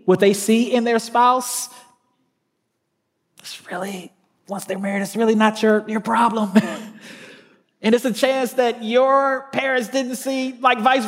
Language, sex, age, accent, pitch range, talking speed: English, male, 30-49, American, 135-215 Hz, 150 wpm